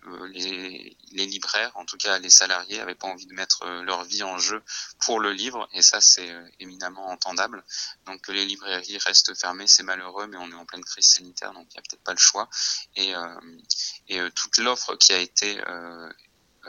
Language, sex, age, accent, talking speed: French, male, 20-39, French, 205 wpm